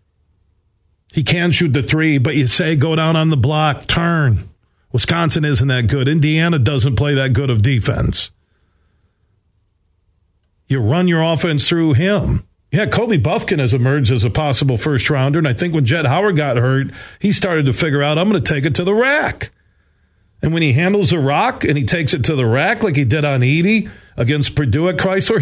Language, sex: English, male